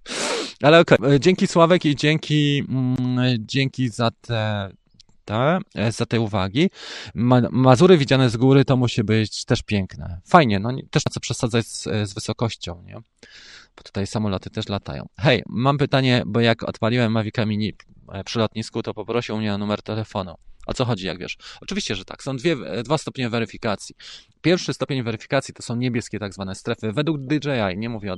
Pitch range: 105-135 Hz